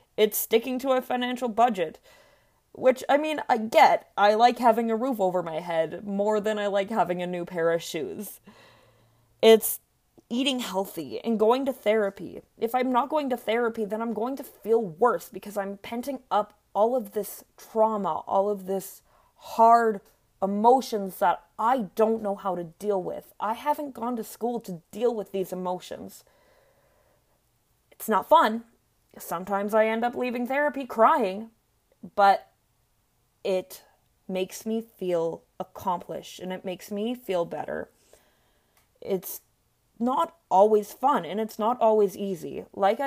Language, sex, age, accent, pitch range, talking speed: English, female, 30-49, American, 195-240 Hz, 155 wpm